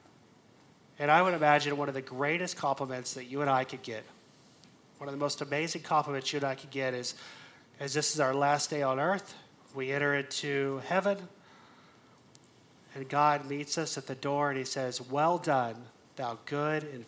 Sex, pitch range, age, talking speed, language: male, 135-155 Hz, 30-49, 190 wpm, English